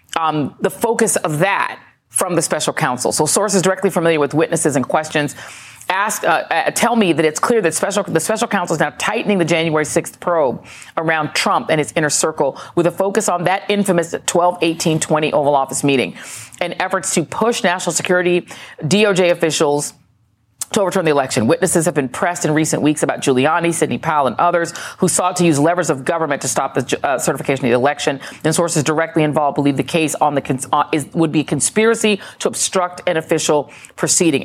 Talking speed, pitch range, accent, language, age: 200 wpm, 145-180 Hz, American, English, 40-59